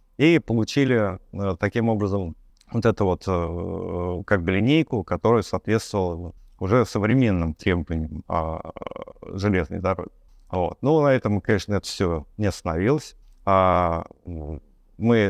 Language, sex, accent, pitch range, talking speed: Russian, male, native, 90-115 Hz, 120 wpm